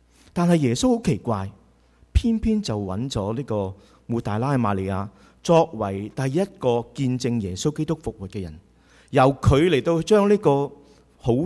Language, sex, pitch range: Chinese, male, 80-140 Hz